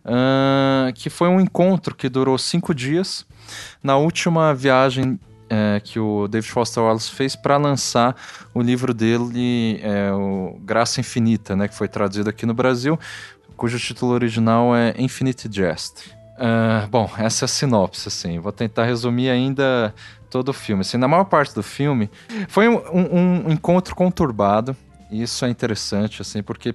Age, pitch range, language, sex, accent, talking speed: 20-39, 110-135 Hz, Portuguese, male, Brazilian, 160 wpm